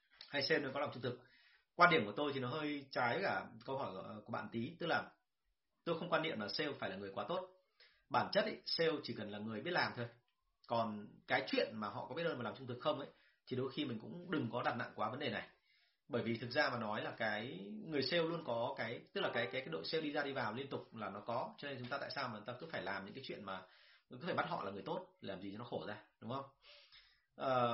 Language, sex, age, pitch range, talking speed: Vietnamese, male, 30-49, 115-145 Hz, 290 wpm